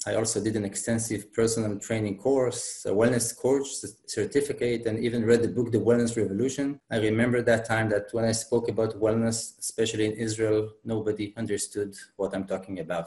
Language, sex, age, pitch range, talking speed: English, male, 30-49, 105-120 Hz, 180 wpm